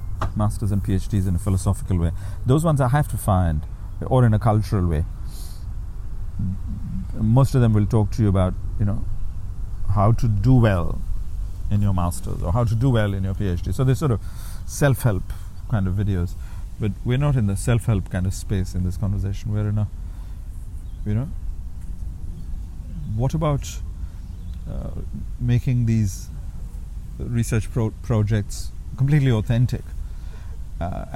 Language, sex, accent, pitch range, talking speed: English, male, Indian, 85-115 Hz, 150 wpm